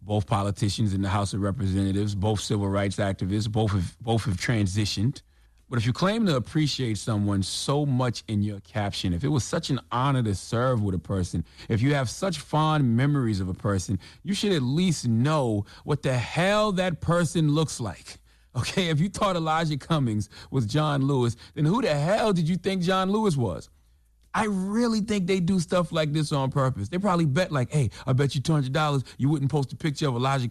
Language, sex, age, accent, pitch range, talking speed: English, male, 30-49, American, 115-165 Hz, 205 wpm